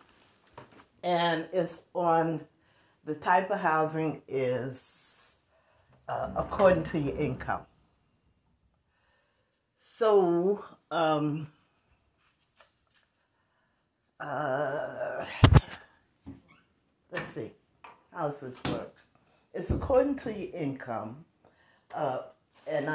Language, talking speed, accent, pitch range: English, 75 wpm, American, 135-175 Hz